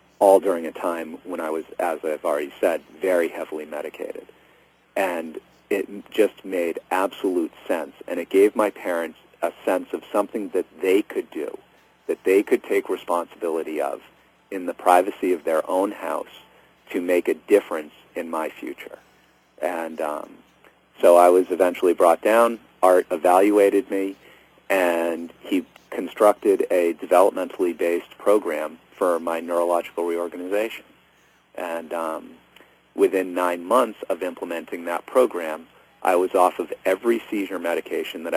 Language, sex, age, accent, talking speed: English, male, 40-59, American, 140 wpm